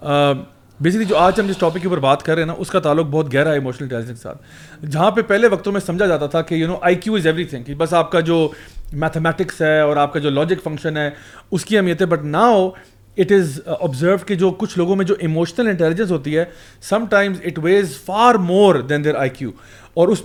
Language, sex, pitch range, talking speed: Urdu, male, 150-205 Hz, 235 wpm